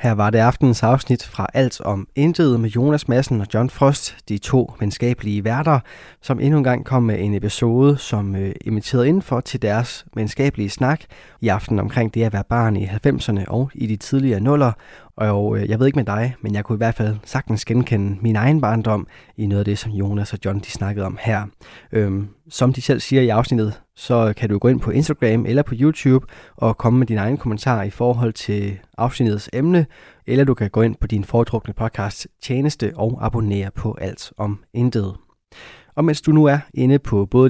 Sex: male